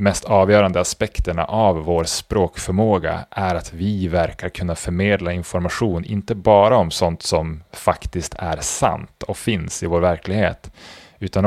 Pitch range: 85-100 Hz